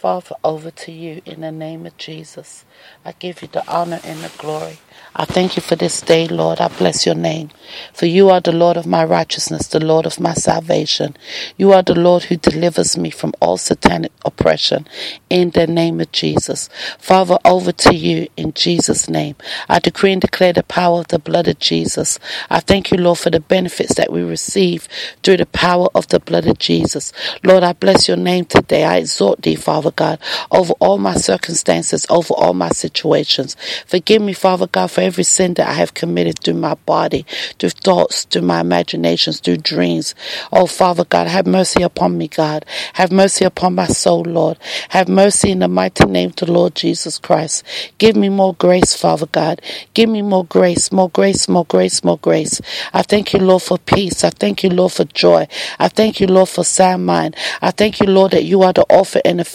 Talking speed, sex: 205 wpm, female